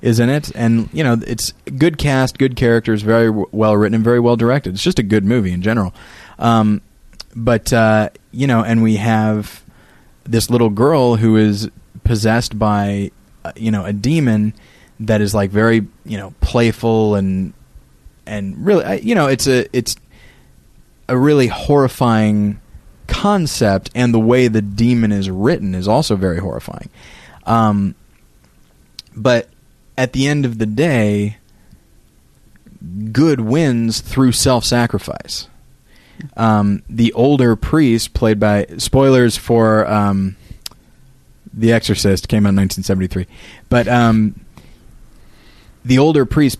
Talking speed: 140 wpm